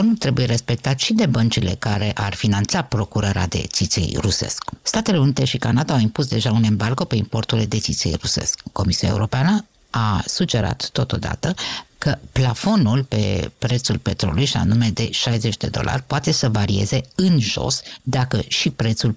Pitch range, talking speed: 110-140 Hz, 155 wpm